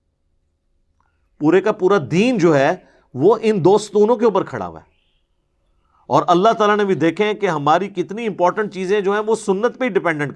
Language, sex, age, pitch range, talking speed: Urdu, male, 50-69, 125-195 Hz, 185 wpm